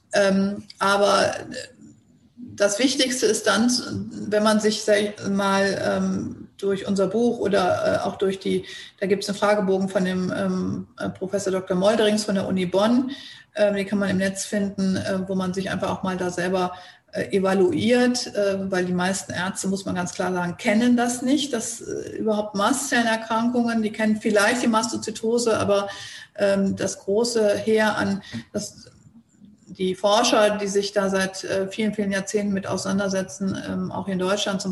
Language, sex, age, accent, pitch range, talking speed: German, female, 40-59, German, 190-215 Hz, 165 wpm